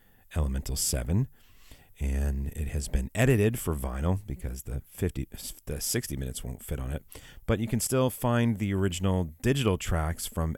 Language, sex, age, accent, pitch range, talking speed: English, male, 40-59, American, 80-100 Hz, 165 wpm